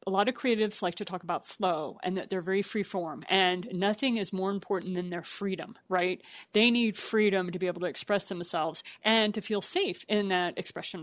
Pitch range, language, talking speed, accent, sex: 190-235 Hz, English, 220 wpm, American, female